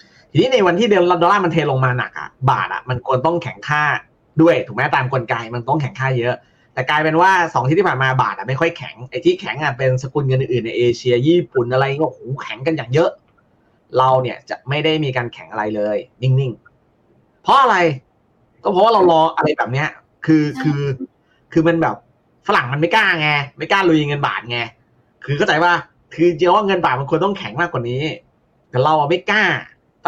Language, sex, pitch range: Thai, male, 130-165 Hz